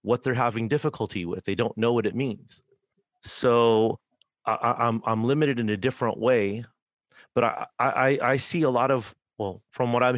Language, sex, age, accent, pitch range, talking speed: English, male, 30-49, American, 110-130 Hz, 195 wpm